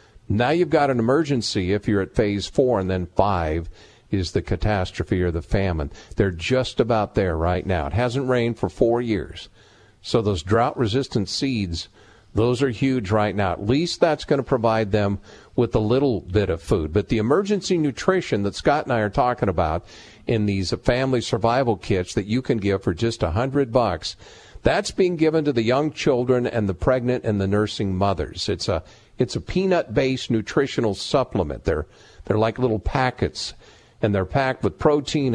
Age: 50-69